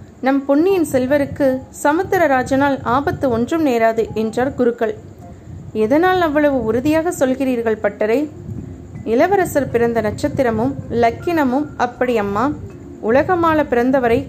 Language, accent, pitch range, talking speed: Tamil, native, 245-310 Hz, 95 wpm